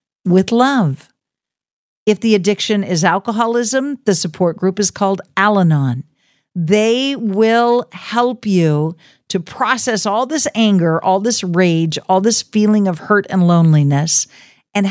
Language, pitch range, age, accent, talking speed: English, 185-240 Hz, 50-69, American, 135 wpm